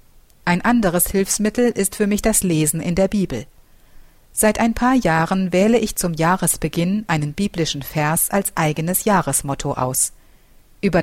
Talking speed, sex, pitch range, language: 145 wpm, female, 160-215 Hz, German